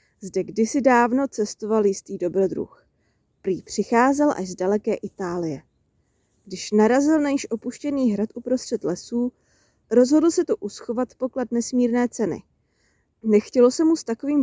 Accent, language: native, Czech